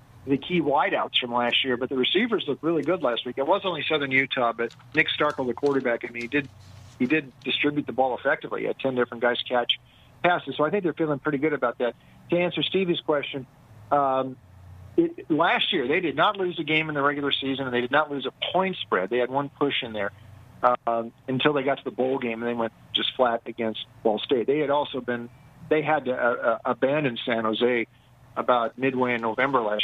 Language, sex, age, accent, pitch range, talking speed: English, male, 50-69, American, 120-145 Hz, 235 wpm